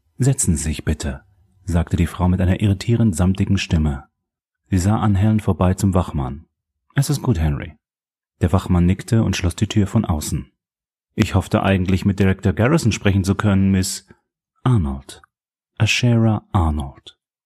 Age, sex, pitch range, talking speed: 30-49, male, 90-115 Hz, 155 wpm